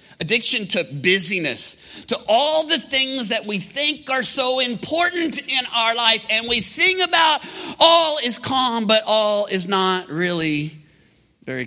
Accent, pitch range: American, 145-205 Hz